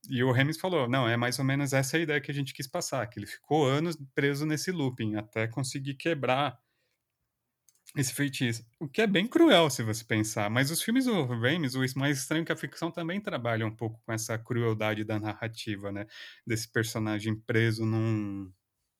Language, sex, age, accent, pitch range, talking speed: Portuguese, male, 30-49, Brazilian, 110-150 Hz, 195 wpm